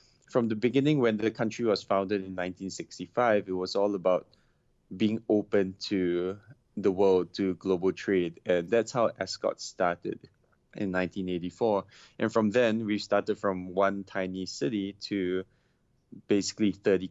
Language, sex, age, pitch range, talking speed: English, male, 20-39, 100-115 Hz, 145 wpm